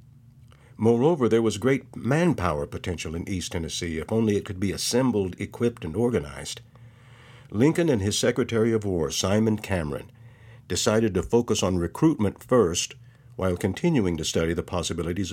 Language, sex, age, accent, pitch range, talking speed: English, male, 60-79, American, 95-125 Hz, 150 wpm